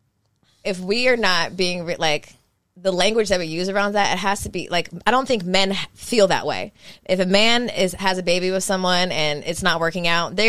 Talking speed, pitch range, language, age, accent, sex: 230 wpm, 155-195 Hz, English, 20-39, American, female